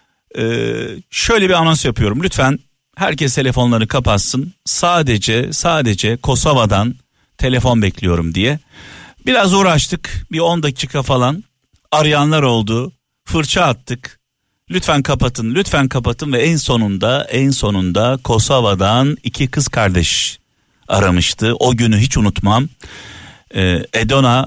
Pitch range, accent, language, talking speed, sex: 105-135 Hz, native, Turkish, 110 wpm, male